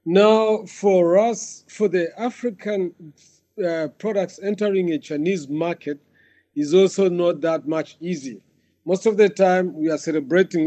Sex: male